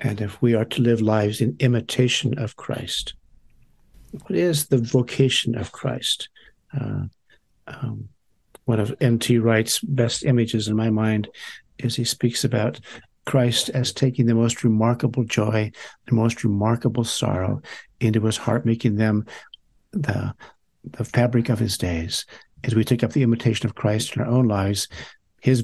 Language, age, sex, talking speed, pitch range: English, 60-79, male, 155 wpm, 110-125 Hz